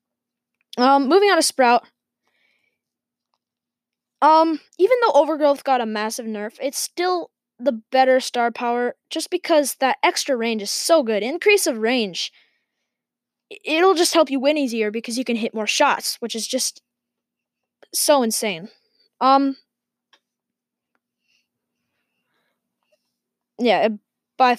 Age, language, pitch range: 10-29, English, 235-320 Hz